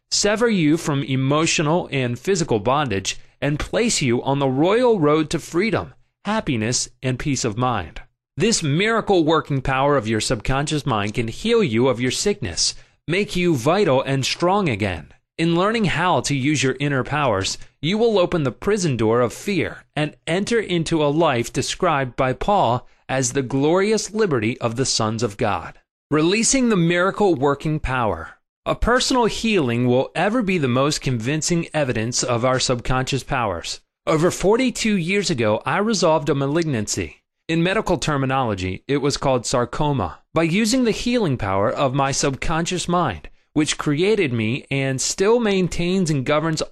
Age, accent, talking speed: 30-49, American, 160 wpm